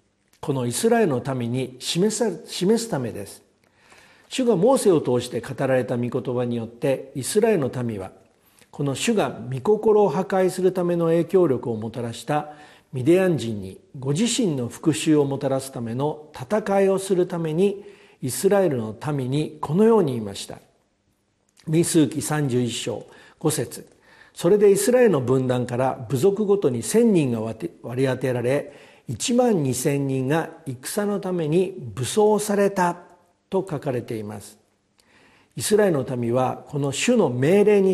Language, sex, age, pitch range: Japanese, male, 50-69, 125-190 Hz